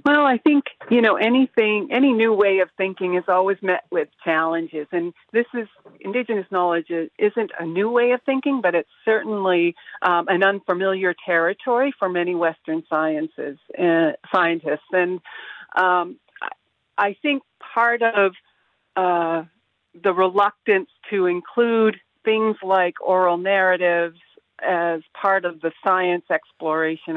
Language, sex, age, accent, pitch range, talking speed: English, female, 50-69, American, 170-215 Hz, 135 wpm